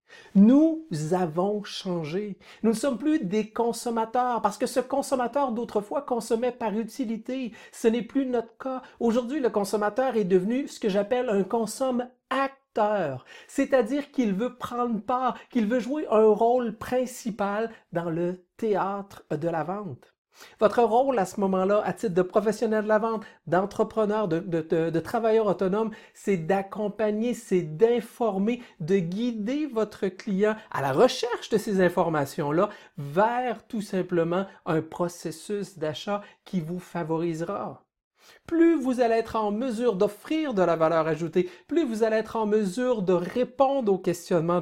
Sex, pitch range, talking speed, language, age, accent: male, 180-240 Hz, 150 wpm, French, 50-69, Canadian